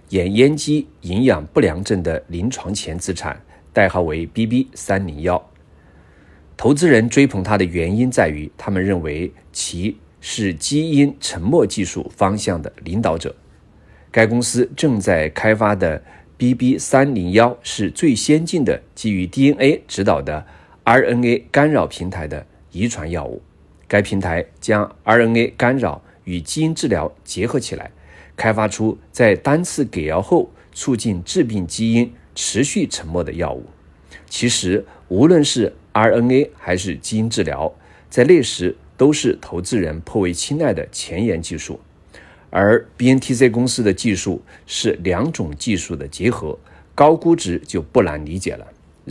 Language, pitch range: Chinese, 85-120 Hz